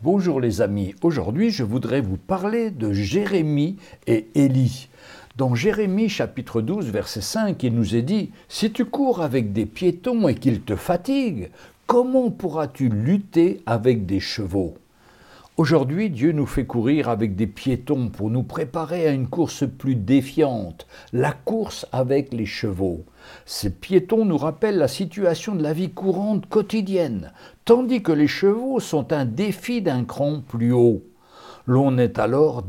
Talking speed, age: 155 wpm, 60-79